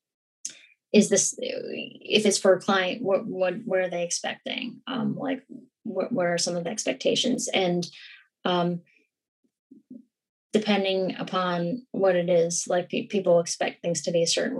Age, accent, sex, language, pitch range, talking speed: 10-29, American, female, English, 175-235 Hz, 155 wpm